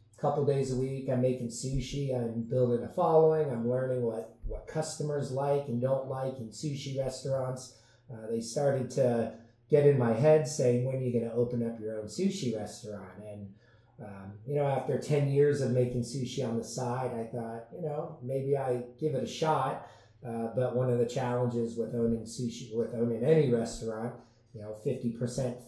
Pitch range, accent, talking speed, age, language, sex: 115-135 Hz, American, 190 wpm, 30-49, English, male